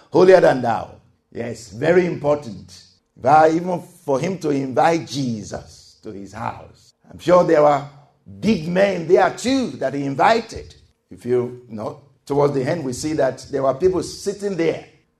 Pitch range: 140-195 Hz